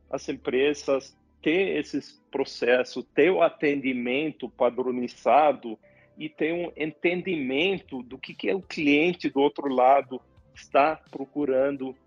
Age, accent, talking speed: 40-59, Brazilian, 125 wpm